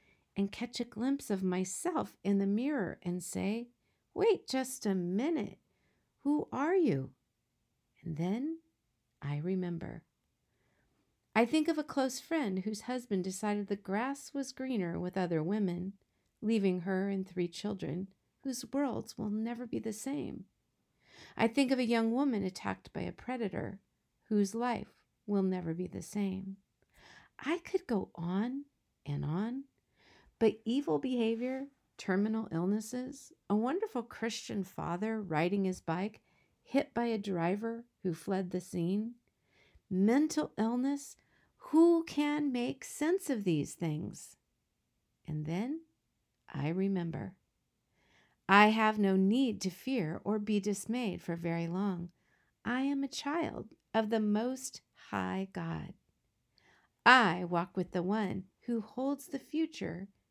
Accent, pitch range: American, 185-260 Hz